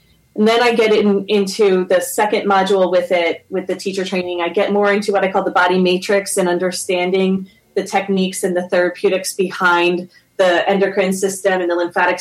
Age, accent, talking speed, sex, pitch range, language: 30-49, American, 185 wpm, female, 175-200 Hz, English